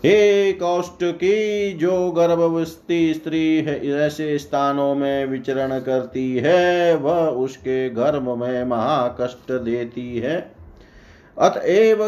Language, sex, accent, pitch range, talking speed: Hindi, male, native, 130-185 Hz, 95 wpm